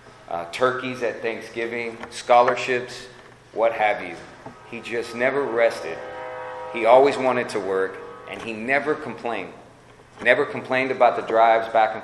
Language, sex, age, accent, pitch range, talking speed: English, male, 40-59, American, 105-125 Hz, 140 wpm